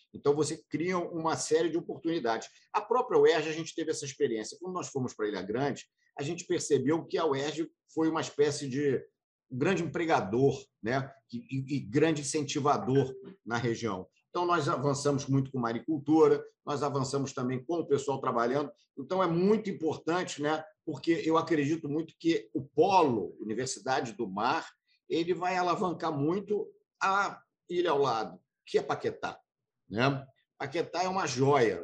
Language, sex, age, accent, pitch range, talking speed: Portuguese, male, 50-69, Brazilian, 135-175 Hz, 160 wpm